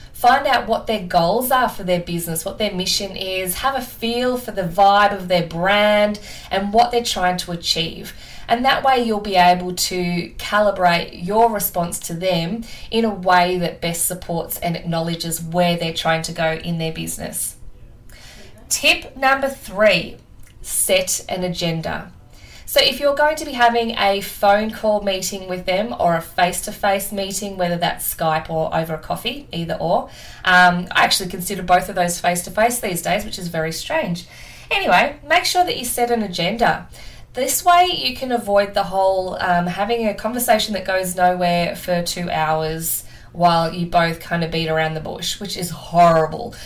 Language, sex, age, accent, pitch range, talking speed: English, female, 20-39, Australian, 170-220 Hz, 180 wpm